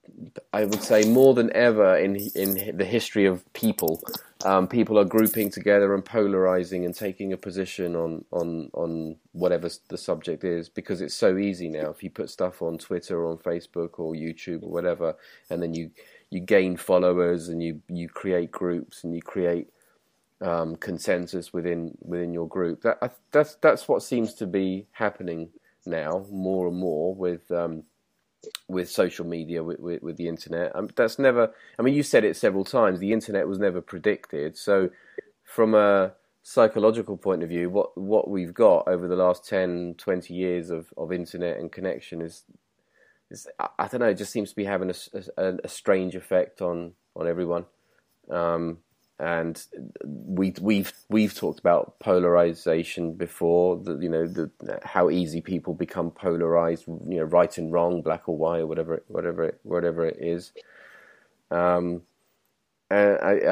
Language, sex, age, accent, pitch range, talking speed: English, male, 30-49, British, 85-95 Hz, 170 wpm